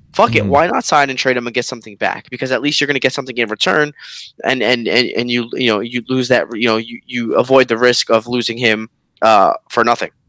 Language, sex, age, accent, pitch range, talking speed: English, male, 20-39, American, 110-145 Hz, 265 wpm